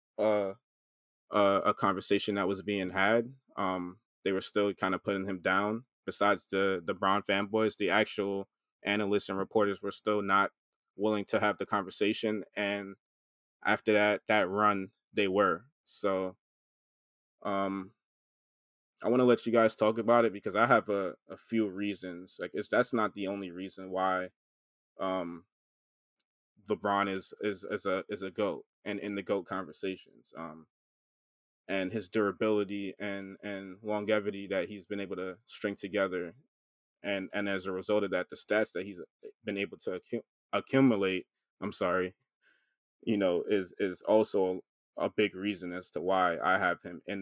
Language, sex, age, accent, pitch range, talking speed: English, male, 20-39, American, 95-105 Hz, 165 wpm